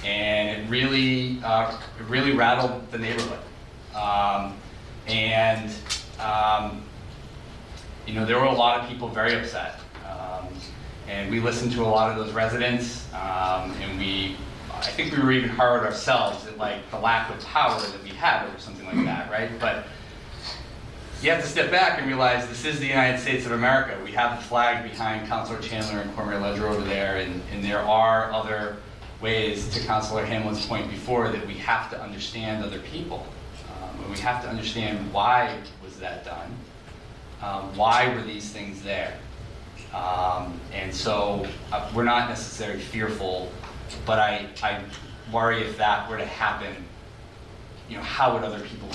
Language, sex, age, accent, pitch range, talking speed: English, male, 30-49, American, 100-120 Hz, 170 wpm